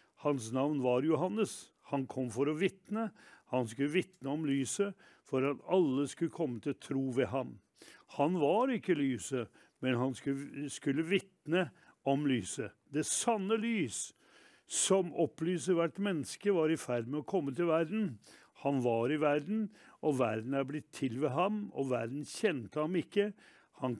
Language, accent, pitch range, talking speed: English, Swedish, 135-185 Hz, 165 wpm